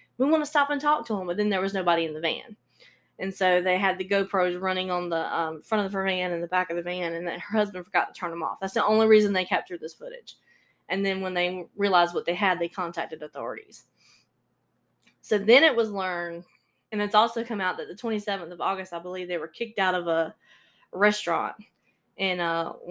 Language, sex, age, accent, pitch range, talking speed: English, female, 20-39, American, 175-205 Hz, 235 wpm